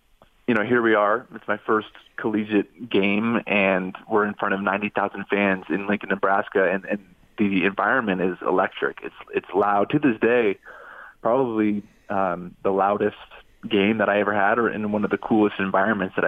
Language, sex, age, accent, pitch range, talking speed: English, male, 20-39, American, 100-115 Hz, 185 wpm